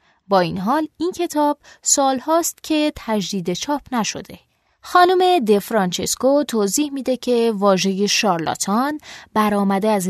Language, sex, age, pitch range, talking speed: Persian, female, 20-39, 185-250 Hz, 125 wpm